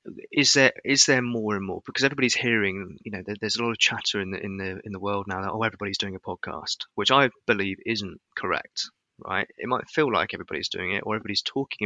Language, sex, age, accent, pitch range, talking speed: English, male, 30-49, British, 100-115 Hz, 240 wpm